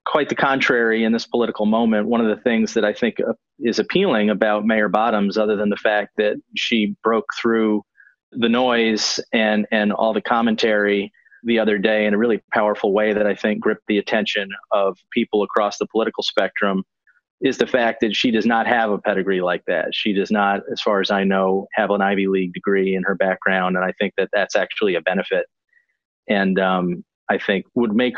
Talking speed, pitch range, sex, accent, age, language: 205 wpm, 100-120 Hz, male, American, 40-59, English